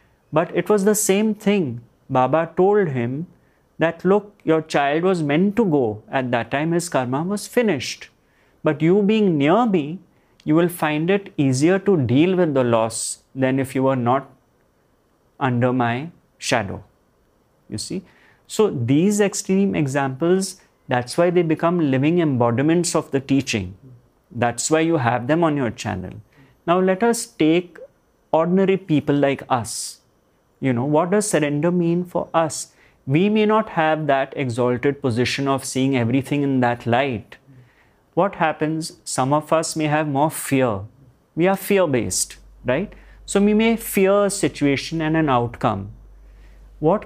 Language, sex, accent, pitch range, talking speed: English, male, Indian, 125-180 Hz, 155 wpm